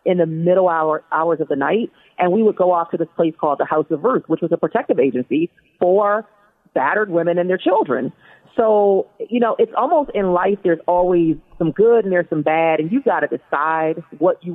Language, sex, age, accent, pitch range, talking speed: English, female, 40-59, American, 155-195 Hz, 225 wpm